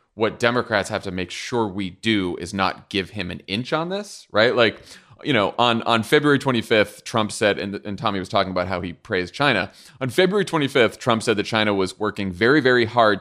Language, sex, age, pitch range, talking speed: English, male, 30-49, 100-125 Hz, 220 wpm